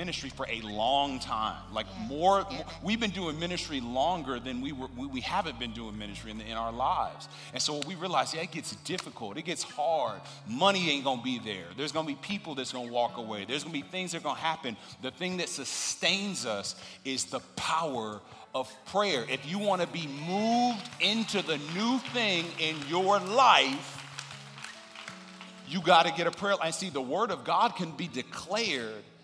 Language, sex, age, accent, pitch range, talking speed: English, male, 40-59, American, 145-200 Hz, 210 wpm